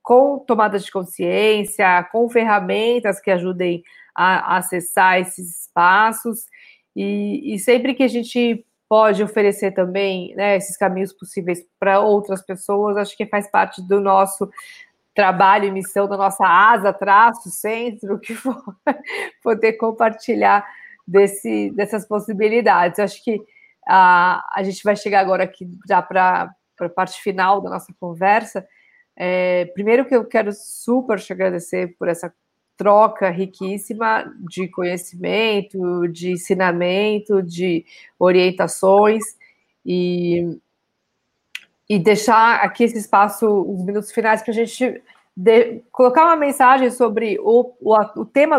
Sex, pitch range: female, 190-220 Hz